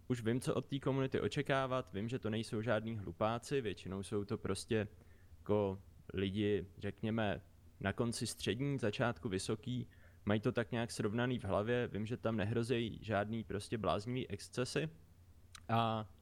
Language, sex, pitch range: Czech, male, 100-120 Hz